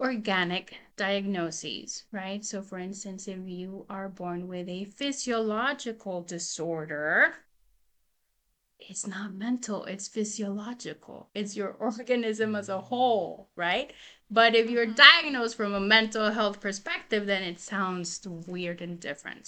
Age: 30-49